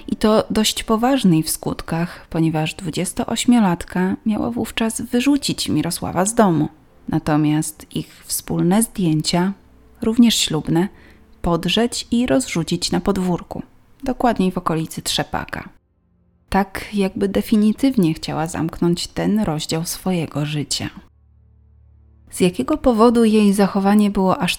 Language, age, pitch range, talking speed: Polish, 30-49, 155-210 Hz, 110 wpm